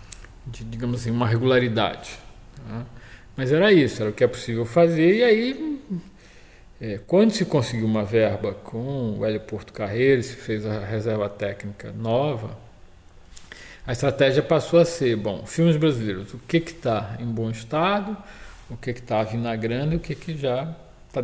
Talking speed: 165 wpm